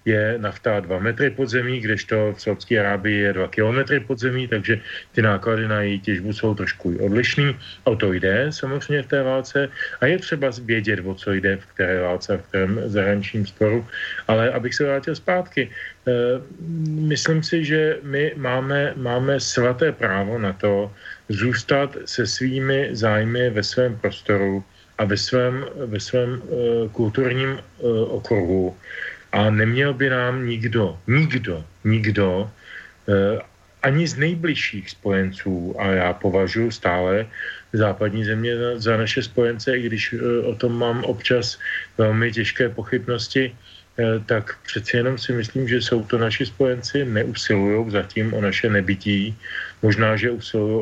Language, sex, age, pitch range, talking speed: Slovak, male, 40-59, 100-125 Hz, 150 wpm